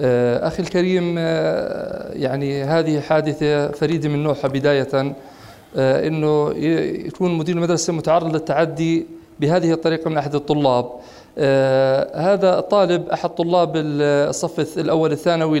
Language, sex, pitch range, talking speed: Arabic, male, 145-165 Hz, 105 wpm